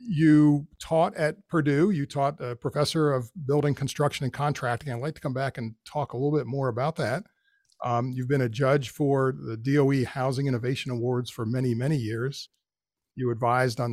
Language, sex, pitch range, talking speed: English, male, 125-150 Hz, 190 wpm